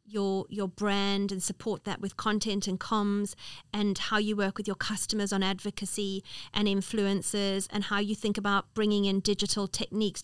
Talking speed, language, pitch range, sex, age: 175 wpm, English, 195-220 Hz, female, 30-49